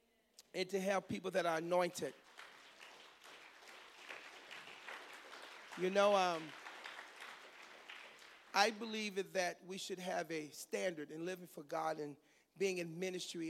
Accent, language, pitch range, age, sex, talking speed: American, English, 160-200 Hz, 40-59, male, 115 wpm